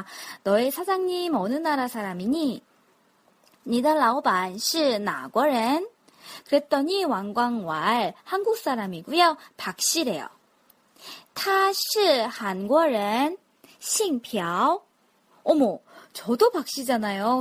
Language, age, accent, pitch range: Korean, 20-39, native, 230-345 Hz